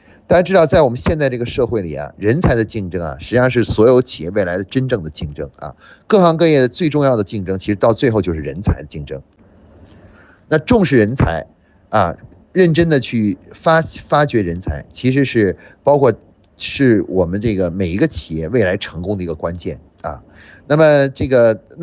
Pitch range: 95-140 Hz